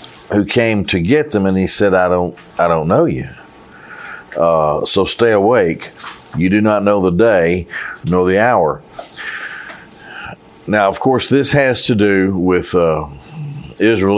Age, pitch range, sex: 50-69, 90-115 Hz, male